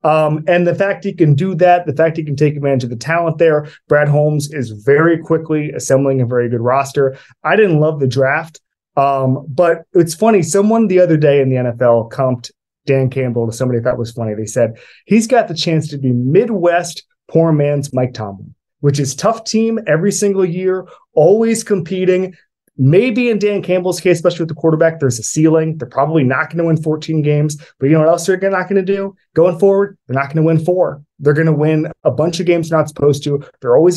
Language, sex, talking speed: English, male, 225 wpm